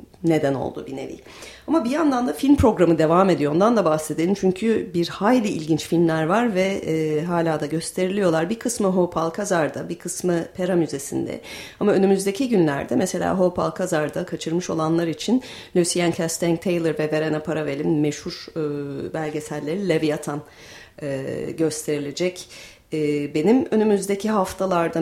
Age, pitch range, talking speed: 40-59, 150-185 Hz, 140 wpm